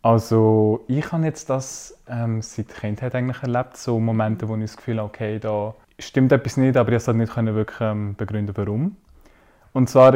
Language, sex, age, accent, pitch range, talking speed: German, male, 20-39, Austrian, 115-130 Hz, 200 wpm